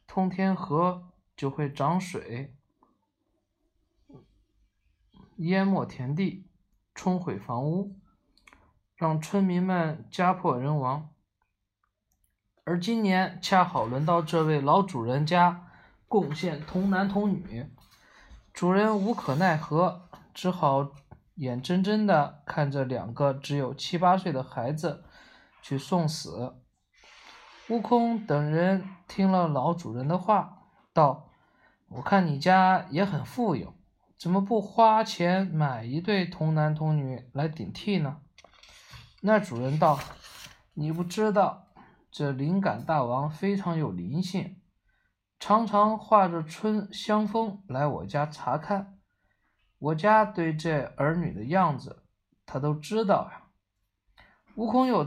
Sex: male